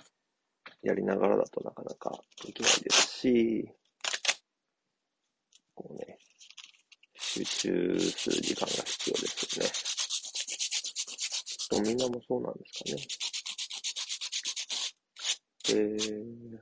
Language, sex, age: Japanese, male, 40-59